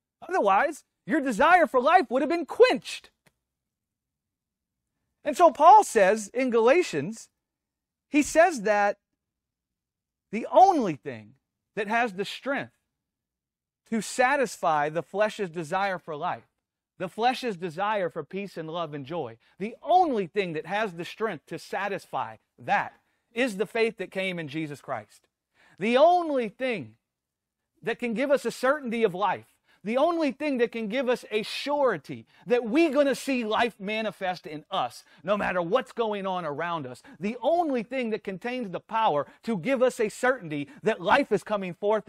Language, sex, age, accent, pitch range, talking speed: English, male, 40-59, American, 190-255 Hz, 160 wpm